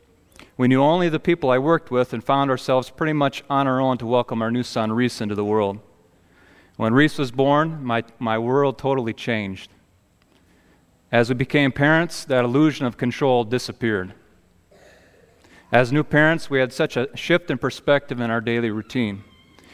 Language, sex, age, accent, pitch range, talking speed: English, male, 40-59, American, 115-140 Hz, 175 wpm